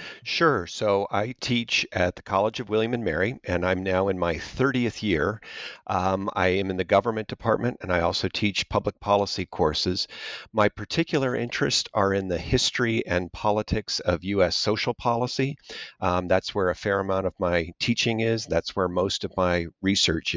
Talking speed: 180 wpm